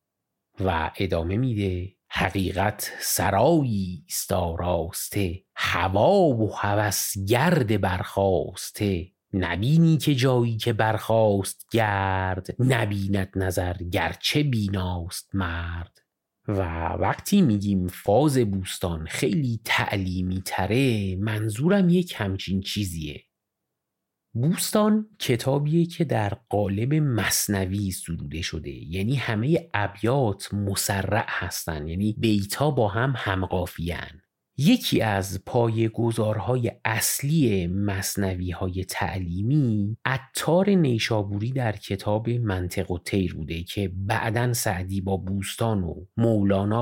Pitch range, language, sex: 95-120 Hz, Persian, male